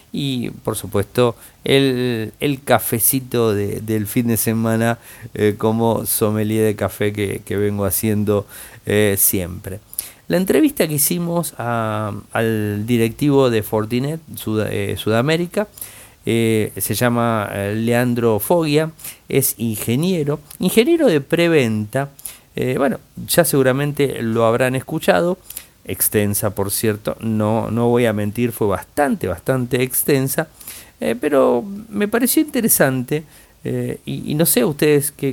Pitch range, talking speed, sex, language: 110-150 Hz, 125 wpm, male, Spanish